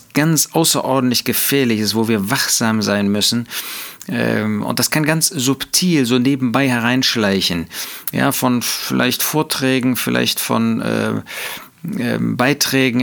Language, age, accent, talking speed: German, 40-59, German, 115 wpm